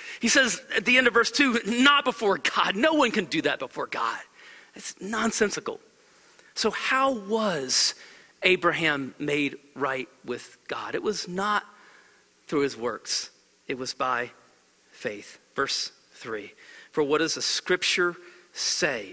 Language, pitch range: English, 175-260 Hz